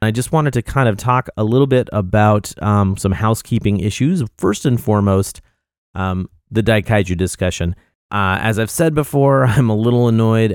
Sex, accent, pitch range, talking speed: male, American, 95-120 Hz, 175 wpm